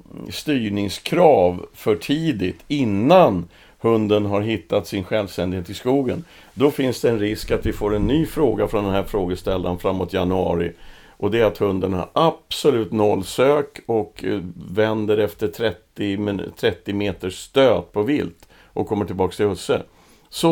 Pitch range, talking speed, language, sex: 95-125 Hz, 150 wpm, Swedish, male